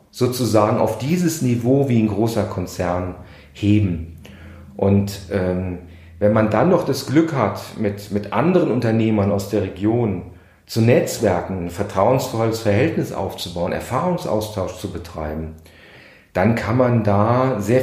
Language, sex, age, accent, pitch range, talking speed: German, male, 40-59, German, 100-130 Hz, 130 wpm